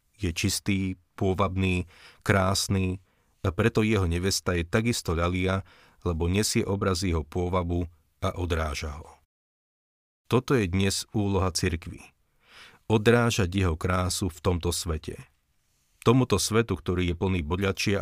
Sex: male